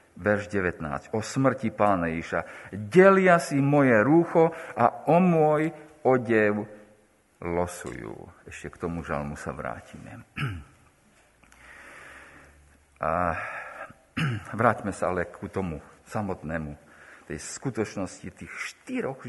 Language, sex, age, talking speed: Slovak, male, 50-69, 100 wpm